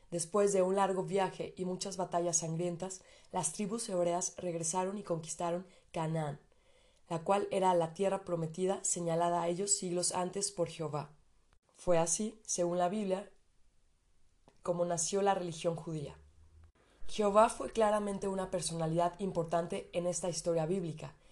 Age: 20-39